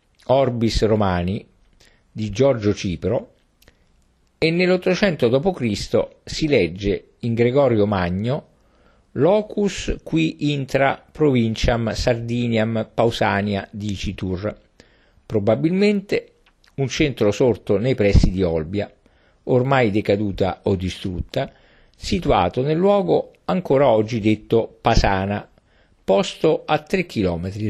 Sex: male